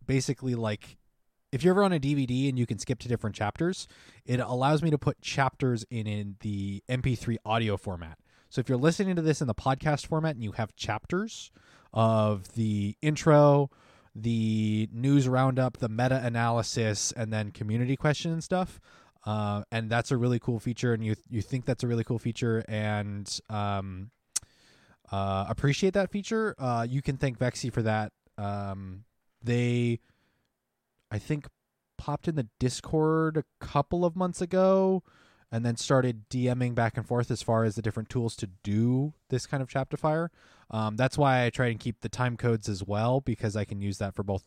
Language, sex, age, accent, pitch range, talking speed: English, male, 20-39, American, 105-135 Hz, 185 wpm